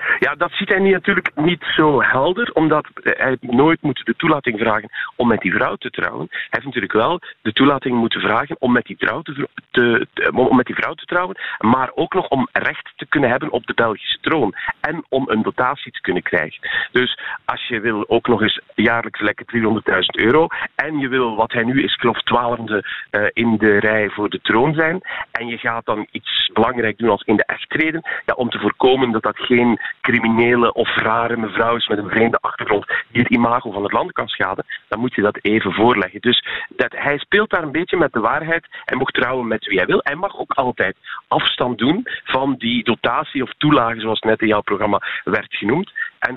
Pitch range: 115-155 Hz